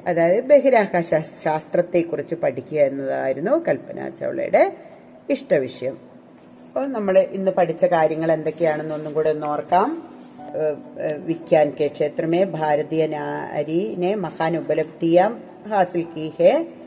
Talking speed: 85 wpm